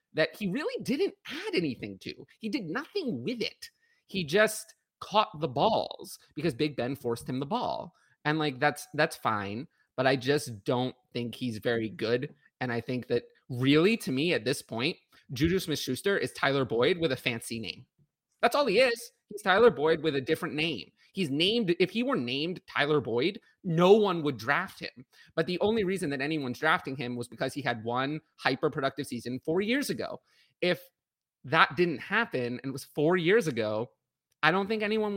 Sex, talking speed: male, 195 wpm